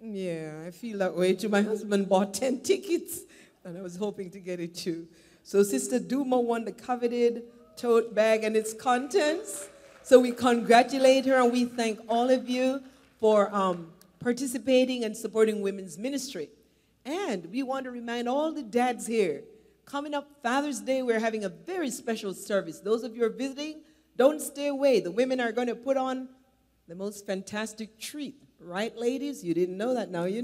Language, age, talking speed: English, 40-59, 185 wpm